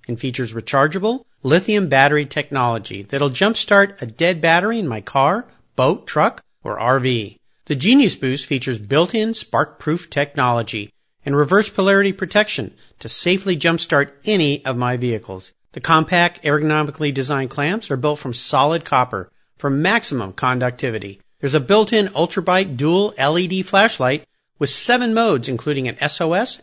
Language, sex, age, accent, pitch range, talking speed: English, male, 50-69, American, 130-185 Hz, 140 wpm